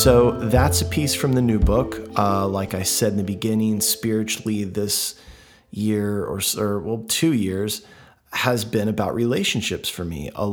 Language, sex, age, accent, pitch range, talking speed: English, male, 30-49, American, 100-115 Hz, 170 wpm